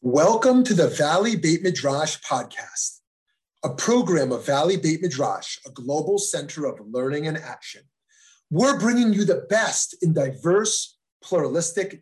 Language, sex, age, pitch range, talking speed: English, male, 30-49, 120-175 Hz, 140 wpm